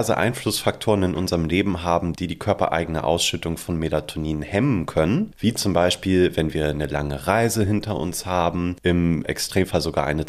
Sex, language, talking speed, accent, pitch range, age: male, German, 165 wpm, German, 80-105 Hz, 30-49